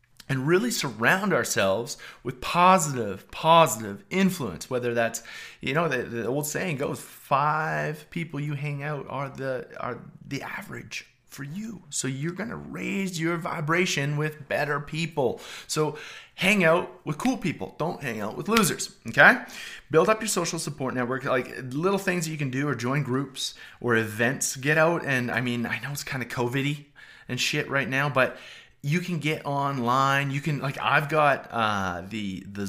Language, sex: English, male